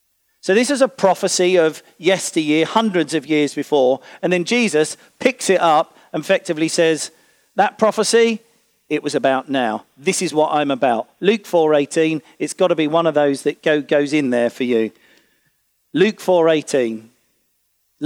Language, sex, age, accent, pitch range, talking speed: English, male, 40-59, British, 150-190 Hz, 160 wpm